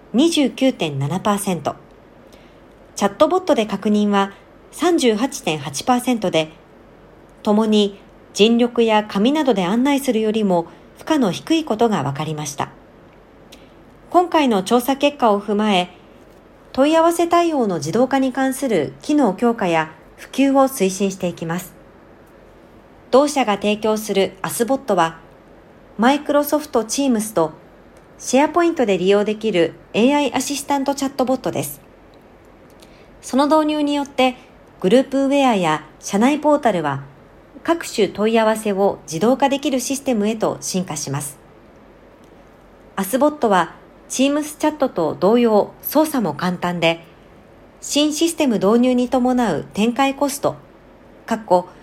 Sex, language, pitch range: male, Japanese, 185-275 Hz